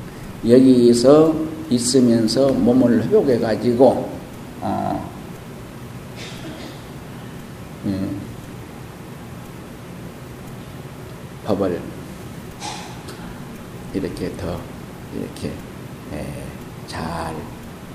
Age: 50-69